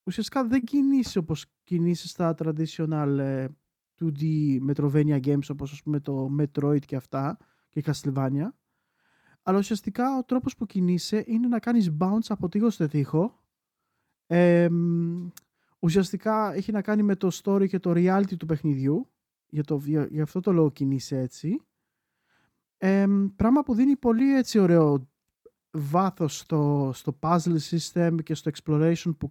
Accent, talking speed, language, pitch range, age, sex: native, 135 wpm, Greek, 150-195 Hz, 20-39, male